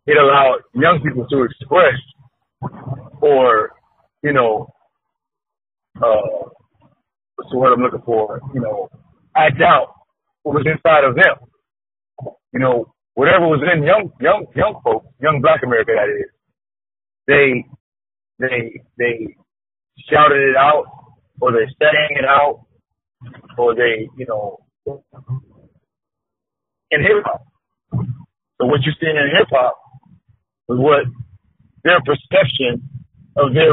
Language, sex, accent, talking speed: English, male, American, 125 wpm